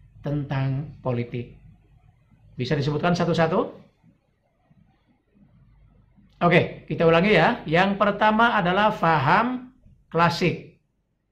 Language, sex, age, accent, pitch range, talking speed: Indonesian, male, 50-69, native, 135-180 Hz, 75 wpm